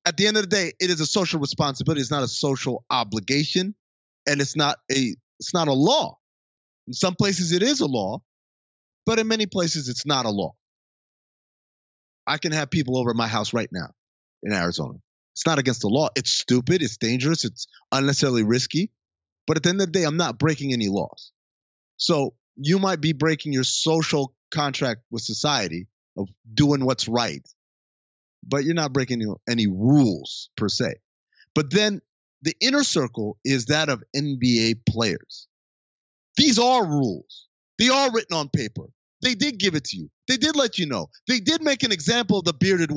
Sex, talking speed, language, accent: male, 185 wpm, English, American